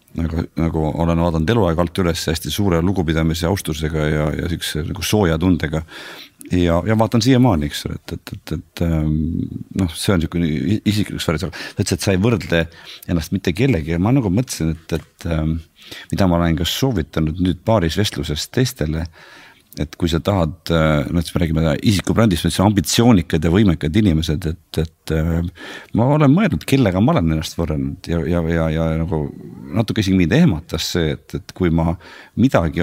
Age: 50-69